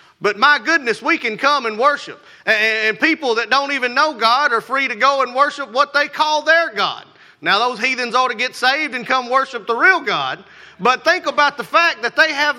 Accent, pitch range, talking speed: American, 180-290 Hz, 225 wpm